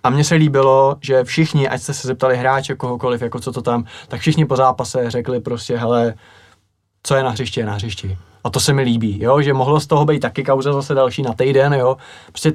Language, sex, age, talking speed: Czech, male, 20-39, 235 wpm